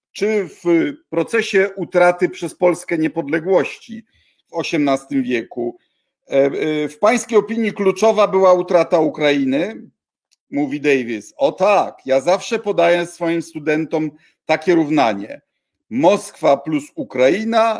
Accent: native